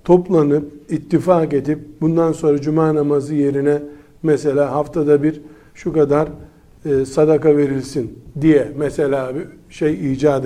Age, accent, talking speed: 60-79, native, 115 wpm